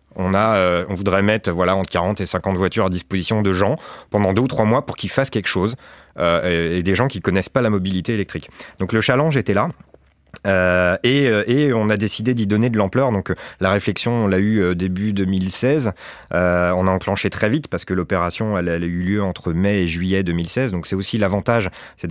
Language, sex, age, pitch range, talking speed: French, male, 30-49, 90-110 Hz, 230 wpm